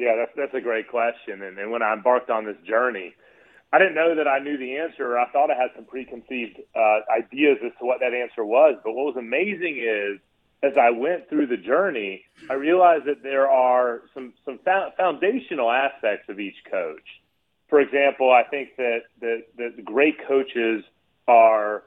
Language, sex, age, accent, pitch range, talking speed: English, male, 30-49, American, 115-155 Hz, 195 wpm